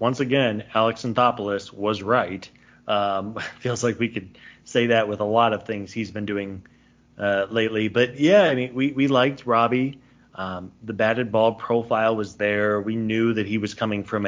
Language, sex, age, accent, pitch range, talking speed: English, male, 30-49, American, 110-135 Hz, 190 wpm